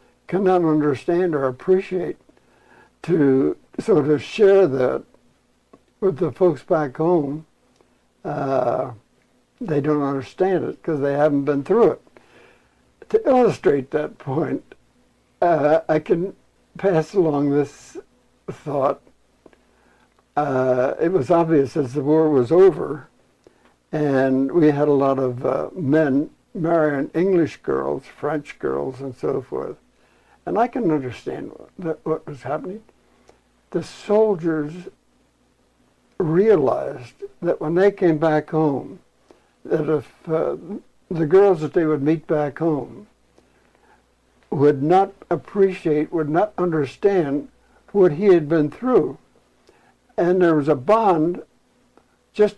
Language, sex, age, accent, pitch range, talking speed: English, male, 60-79, American, 145-185 Hz, 120 wpm